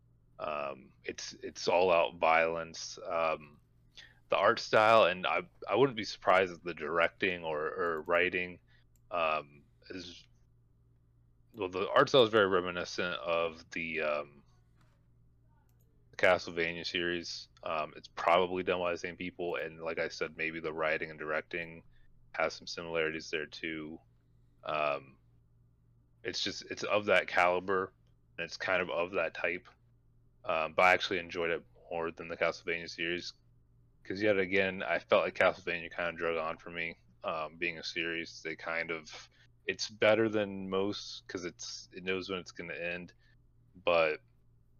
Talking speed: 155 wpm